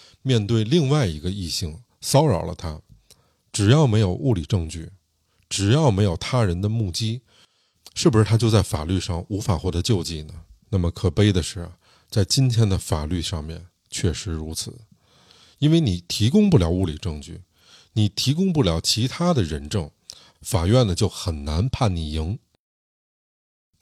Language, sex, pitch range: Chinese, male, 85-120 Hz